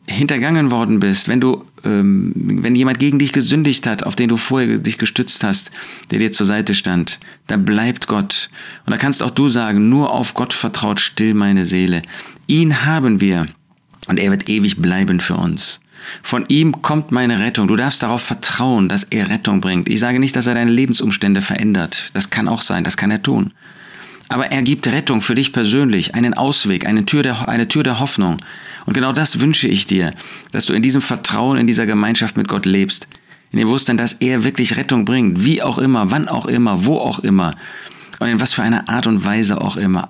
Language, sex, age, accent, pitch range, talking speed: German, male, 40-59, German, 100-135 Hz, 205 wpm